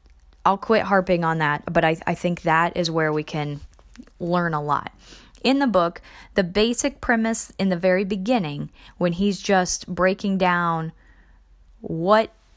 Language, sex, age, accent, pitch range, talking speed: English, female, 20-39, American, 145-195 Hz, 160 wpm